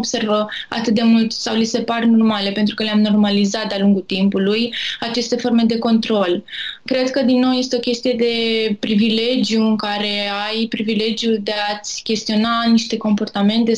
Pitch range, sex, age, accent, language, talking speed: 215-245 Hz, female, 20-39, native, Romanian, 165 wpm